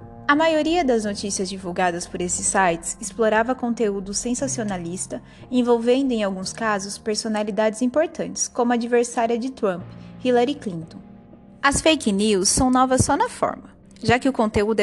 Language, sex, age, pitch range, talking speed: Portuguese, female, 20-39, 200-255 Hz, 145 wpm